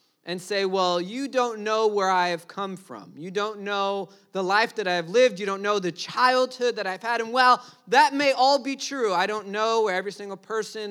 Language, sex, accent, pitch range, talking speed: English, male, American, 195-245 Hz, 230 wpm